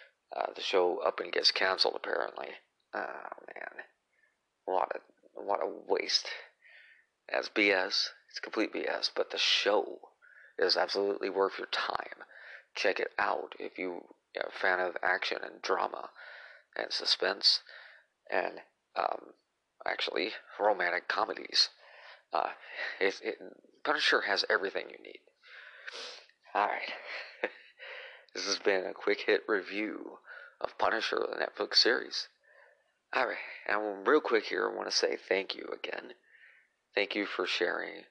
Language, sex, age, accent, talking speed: English, male, 40-59, American, 135 wpm